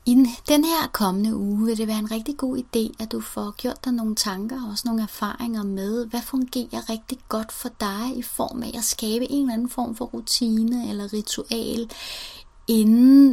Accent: native